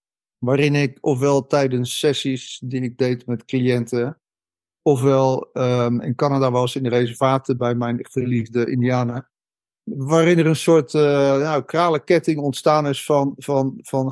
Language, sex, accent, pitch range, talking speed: Dutch, male, Dutch, 125-145 Hz, 145 wpm